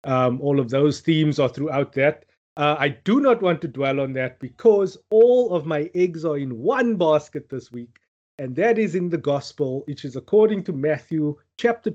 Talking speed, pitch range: 200 wpm, 140-180 Hz